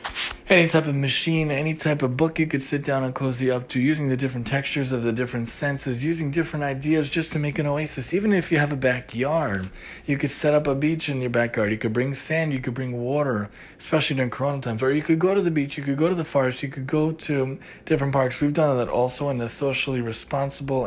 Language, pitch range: English, 120-150 Hz